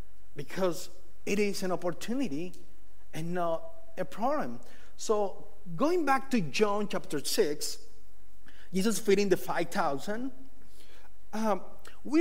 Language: English